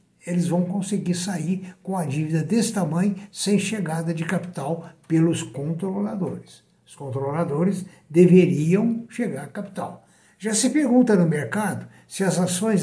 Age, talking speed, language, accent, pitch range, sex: 60-79, 135 wpm, Portuguese, Brazilian, 140-190 Hz, male